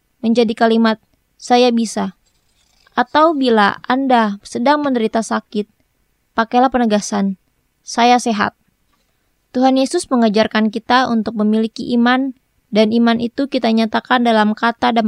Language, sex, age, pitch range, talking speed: Indonesian, female, 20-39, 225-255 Hz, 115 wpm